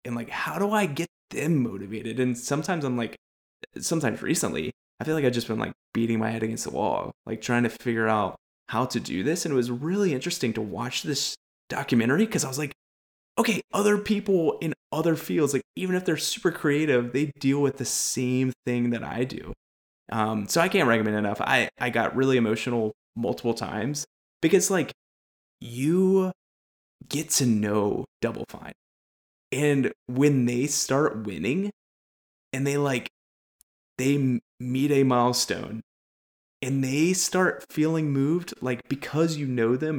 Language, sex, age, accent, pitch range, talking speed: English, male, 20-39, American, 110-150 Hz, 170 wpm